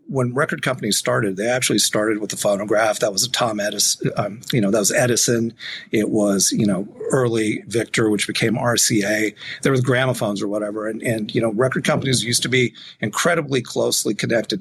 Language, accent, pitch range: English, American, 110-130 Hz